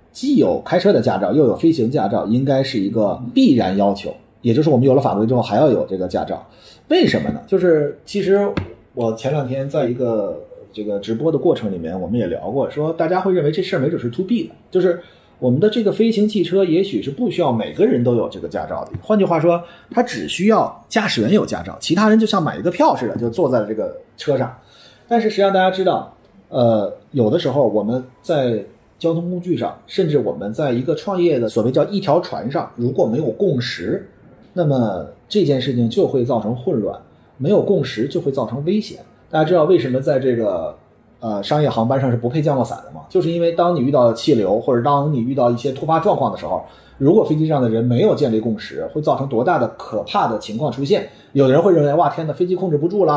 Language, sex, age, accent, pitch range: Chinese, male, 30-49, native, 125-190 Hz